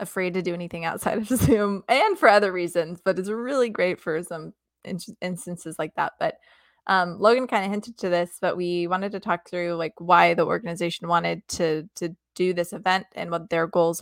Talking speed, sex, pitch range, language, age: 210 wpm, female, 170-200 Hz, English, 20-39